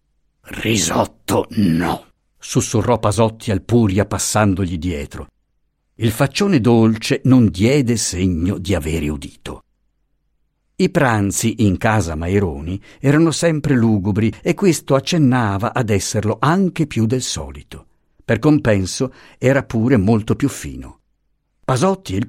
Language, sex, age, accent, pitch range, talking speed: Italian, male, 50-69, native, 95-135 Hz, 120 wpm